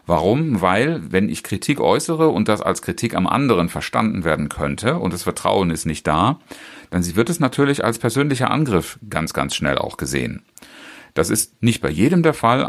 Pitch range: 85-115 Hz